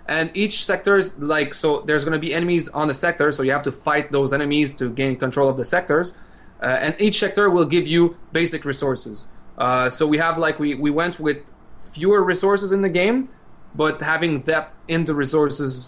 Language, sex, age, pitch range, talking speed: English, male, 20-39, 140-165 Hz, 210 wpm